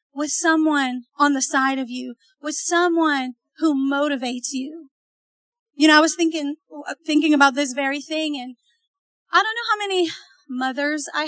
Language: English